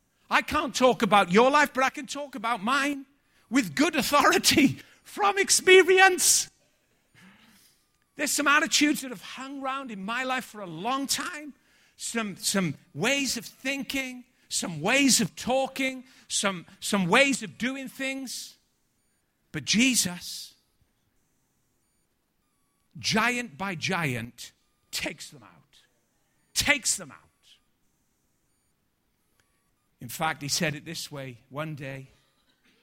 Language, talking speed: English, 120 wpm